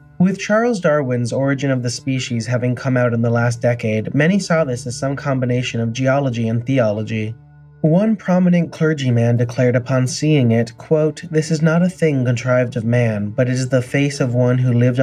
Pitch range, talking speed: 120-140 Hz, 195 wpm